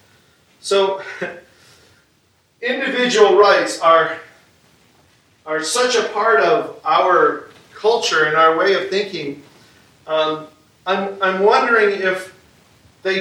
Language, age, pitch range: English, 40-59, 155-200 Hz